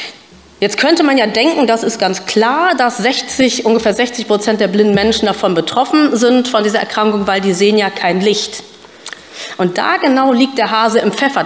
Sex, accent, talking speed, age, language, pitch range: female, German, 190 wpm, 40-59, German, 195-250 Hz